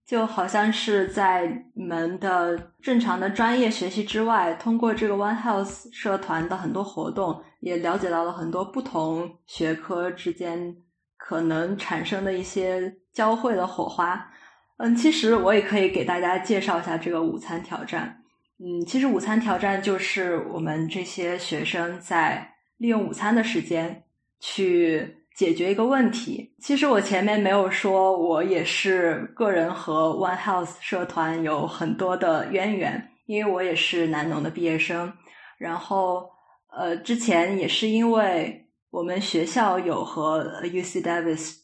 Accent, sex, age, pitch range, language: native, female, 20-39, 170-210 Hz, Chinese